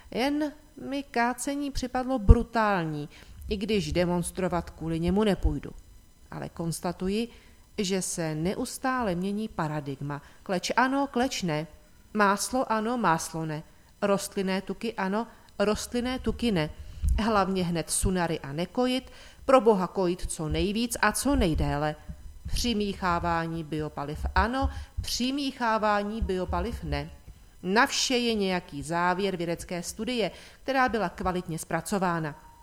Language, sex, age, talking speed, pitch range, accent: Czech, female, 40-59, 115 wpm, 160-225 Hz, native